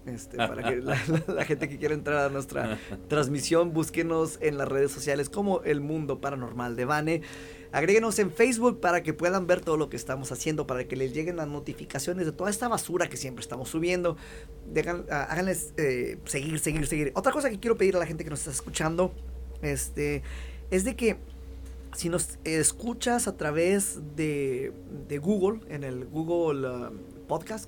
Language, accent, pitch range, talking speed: Spanish, Mexican, 140-190 Hz, 180 wpm